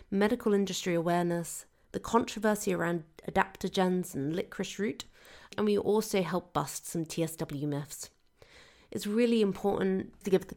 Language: English